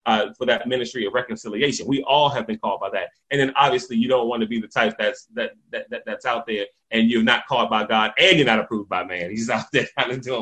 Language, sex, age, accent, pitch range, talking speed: English, male, 30-49, American, 140-215 Hz, 275 wpm